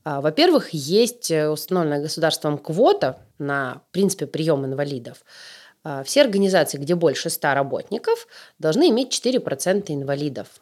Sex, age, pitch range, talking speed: female, 20-39, 150-220 Hz, 105 wpm